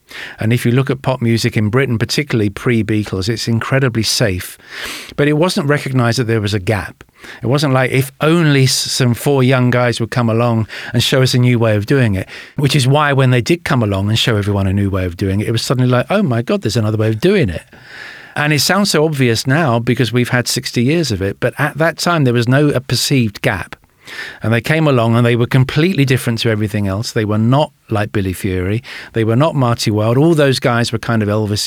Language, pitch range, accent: English, 110-135 Hz, British